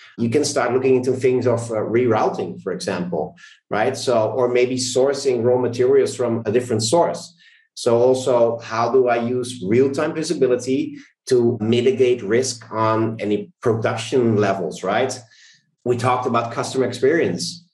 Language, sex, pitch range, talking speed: English, male, 115-135 Hz, 150 wpm